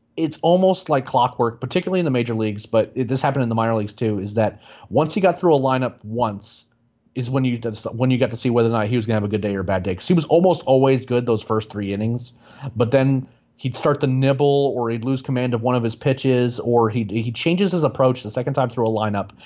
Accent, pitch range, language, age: American, 110-130 Hz, English, 30-49